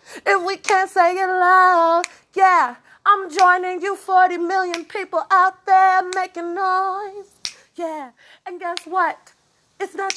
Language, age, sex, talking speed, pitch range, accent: English, 30-49, female, 135 wpm, 305-380 Hz, American